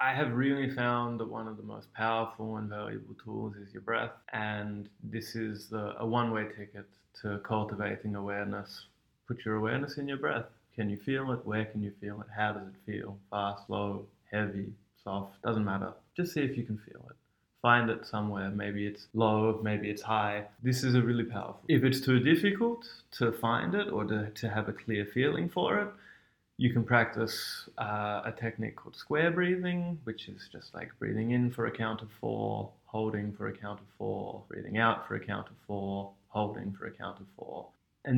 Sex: male